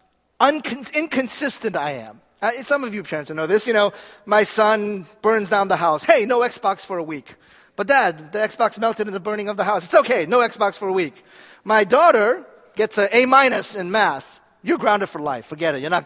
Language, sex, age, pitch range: Korean, male, 40-59, 195-265 Hz